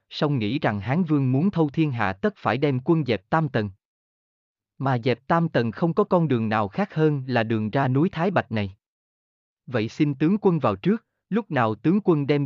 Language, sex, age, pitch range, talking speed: Vietnamese, male, 20-39, 110-160 Hz, 215 wpm